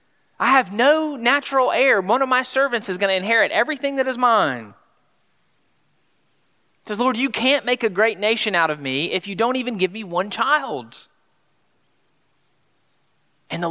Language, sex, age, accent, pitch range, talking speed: English, male, 30-49, American, 135-195 Hz, 170 wpm